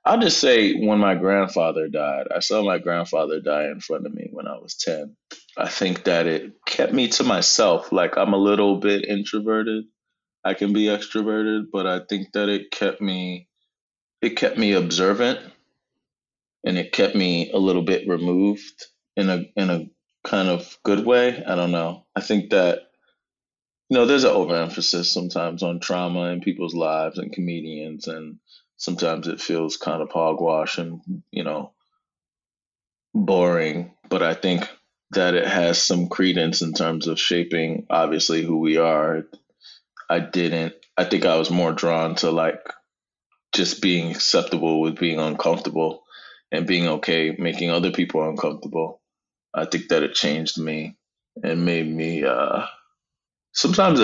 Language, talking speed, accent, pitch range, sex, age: English, 160 wpm, American, 80-100 Hz, male, 20-39